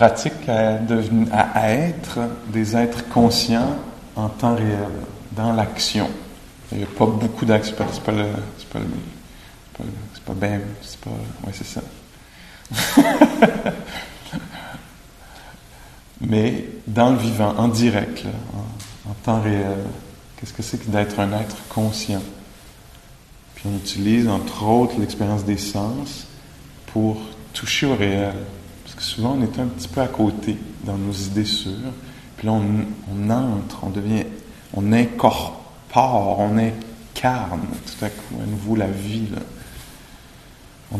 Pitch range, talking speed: 105-115 Hz, 140 wpm